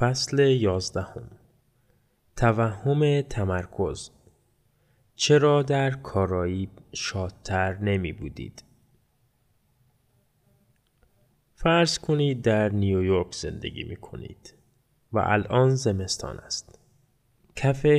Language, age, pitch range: Persian, 20-39, 95-125 Hz